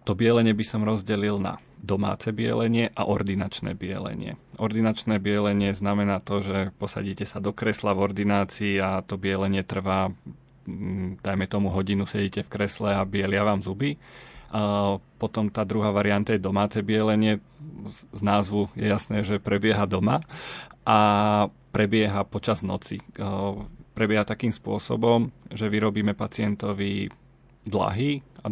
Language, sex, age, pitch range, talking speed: Slovak, male, 30-49, 100-110 Hz, 130 wpm